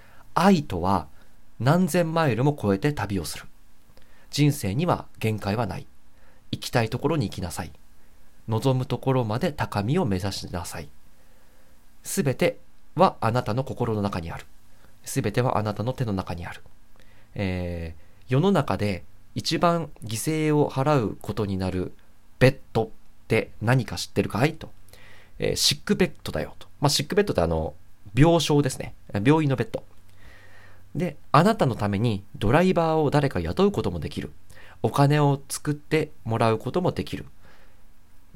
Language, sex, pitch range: Japanese, male, 95-145 Hz